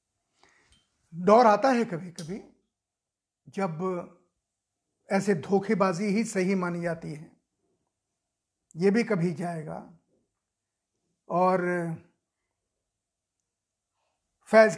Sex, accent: male, native